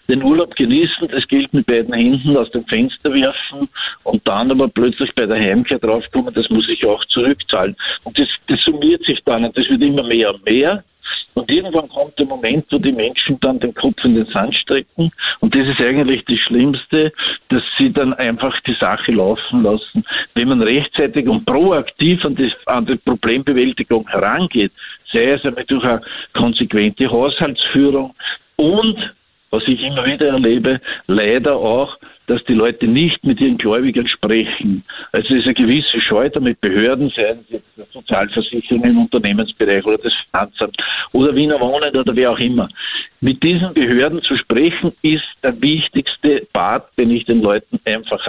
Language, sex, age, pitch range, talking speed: German, male, 50-69, 120-165 Hz, 170 wpm